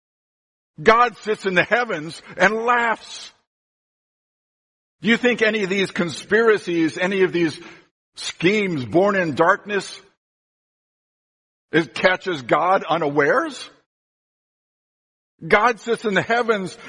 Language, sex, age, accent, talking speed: English, male, 60-79, American, 105 wpm